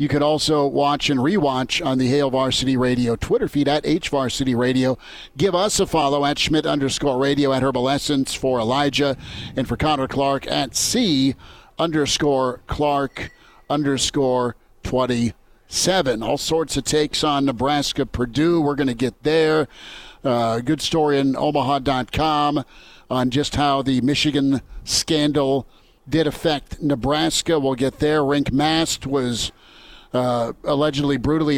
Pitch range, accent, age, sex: 130-150 Hz, American, 50-69, male